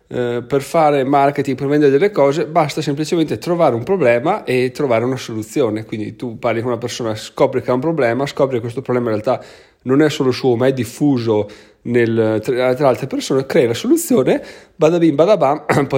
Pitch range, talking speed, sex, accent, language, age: 120-145 Hz, 190 wpm, male, native, Italian, 30-49